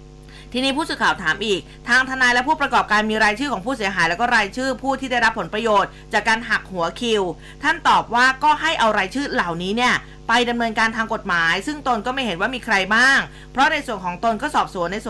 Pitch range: 195-255 Hz